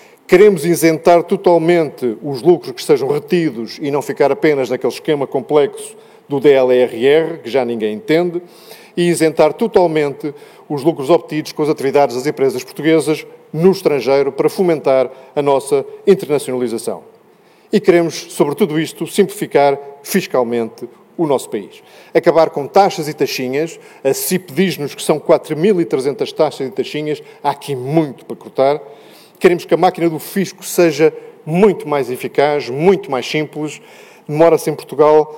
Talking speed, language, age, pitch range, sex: 140 wpm, Portuguese, 40-59, 135-175 Hz, male